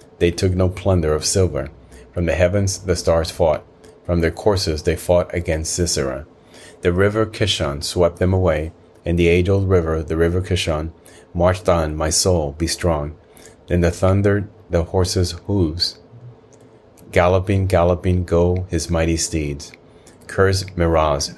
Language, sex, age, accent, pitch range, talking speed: English, male, 30-49, American, 85-95 Hz, 145 wpm